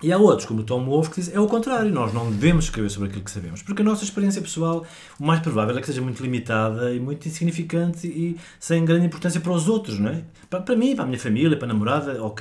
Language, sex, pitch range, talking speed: Portuguese, male, 110-155 Hz, 265 wpm